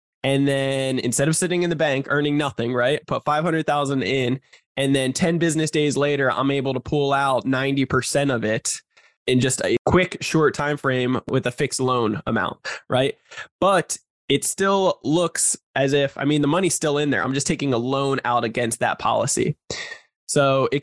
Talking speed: 185 wpm